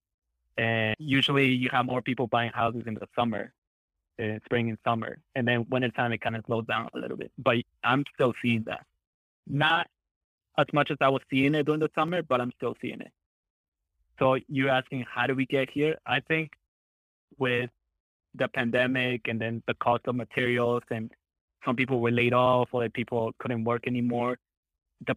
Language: English